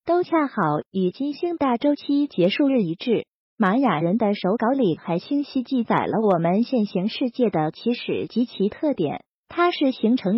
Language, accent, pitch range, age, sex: Chinese, native, 205-290 Hz, 30-49, female